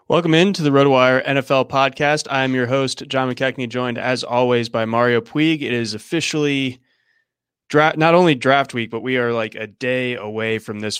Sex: male